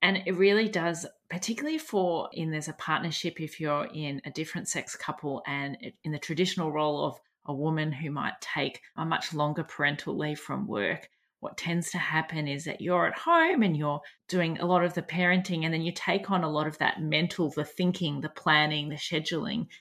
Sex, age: female, 30-49